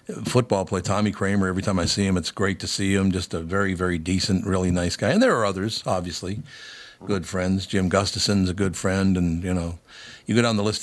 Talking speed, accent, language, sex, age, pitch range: 235 wpm, American, English, male, 50-69, 95-110 Hz